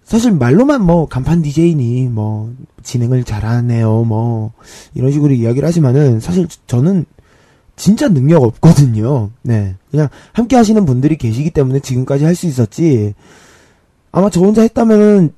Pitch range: 120-160 Hz